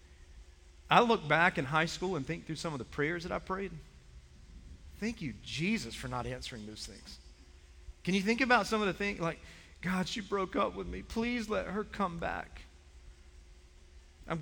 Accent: American